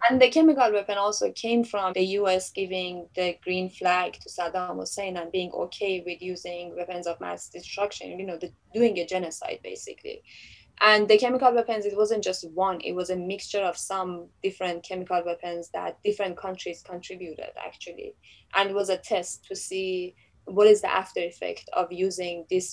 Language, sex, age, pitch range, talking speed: English, female, 20-39, 180-215 Hz, 180 wpm